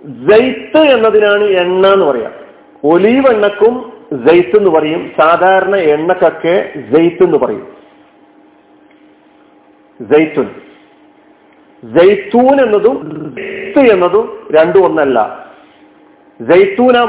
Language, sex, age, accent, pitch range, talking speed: Malayalam, male, 50-69, native, 180-300 Hz, 65 wpm